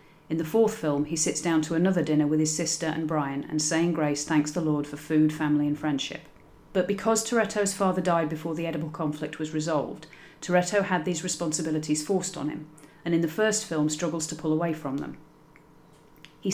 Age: 30-49